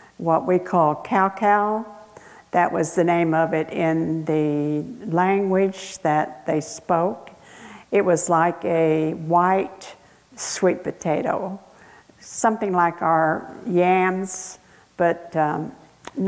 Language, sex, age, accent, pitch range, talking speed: English, female, 60-79, American, 160-190 Hz, 105 wpm